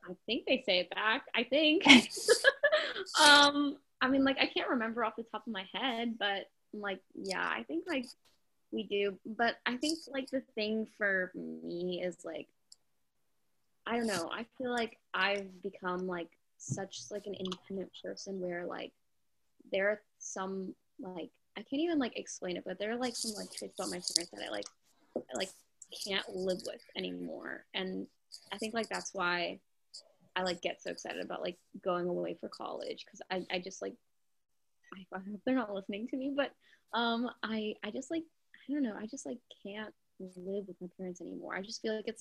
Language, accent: English, American